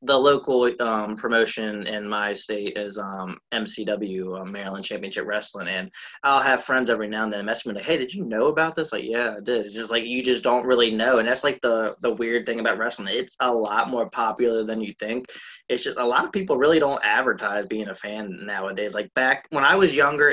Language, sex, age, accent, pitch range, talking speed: English, male, 20-39, American, 105-125 Hz, 235 wpm